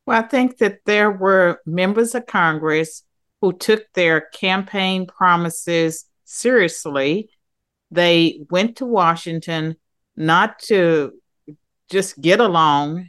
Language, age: English, 50-69